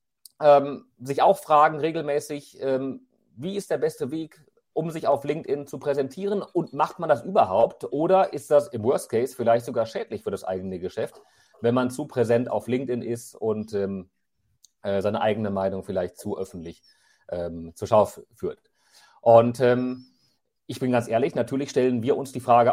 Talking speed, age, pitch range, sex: 175 wpm, 40-59, 125-155 Hz, male